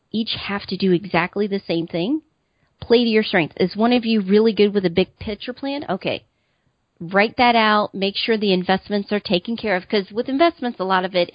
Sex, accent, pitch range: female, American, 175-210 Hz